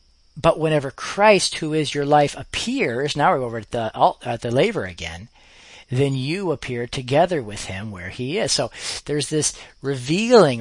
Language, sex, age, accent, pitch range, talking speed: English, male, 40-59, American, 110-145 Hz, 170 wpm